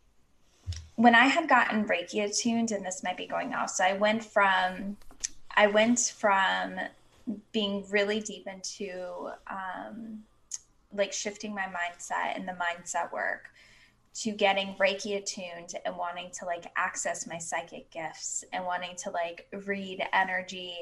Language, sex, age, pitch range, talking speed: English, female, 10-29, 180-215 Hz, 145 wpm